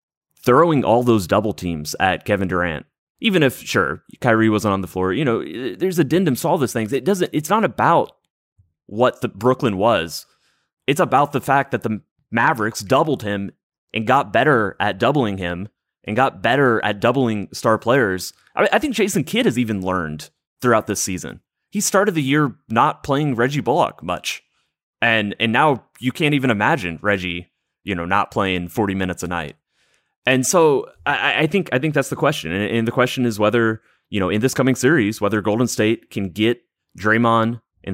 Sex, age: male, 20-39